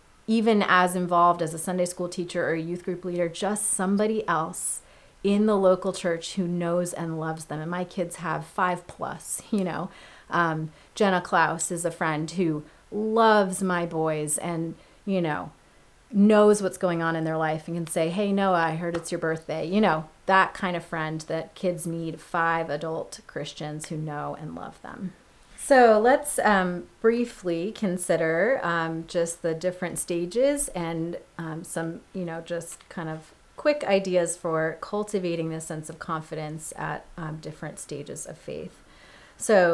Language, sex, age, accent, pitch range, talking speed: English, female, 30-49, American, 160-195 Hz, 170 wpm